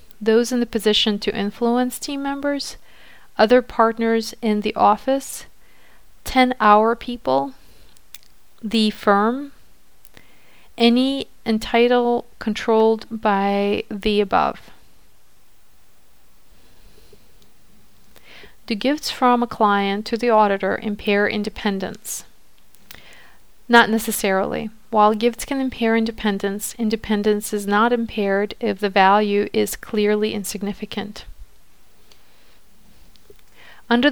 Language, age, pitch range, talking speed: English, 40-59, 205-235 Hz, 90 wpm